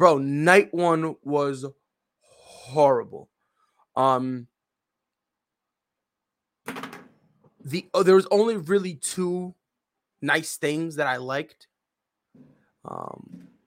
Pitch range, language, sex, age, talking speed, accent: 135-190 Hz, English, male, 20-39, 85 wpm, American